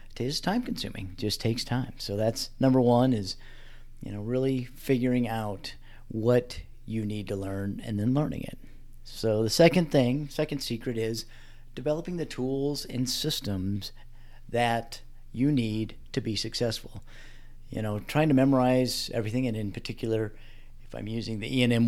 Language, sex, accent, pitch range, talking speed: English, male, American, 110-130 Hz, 160 wpm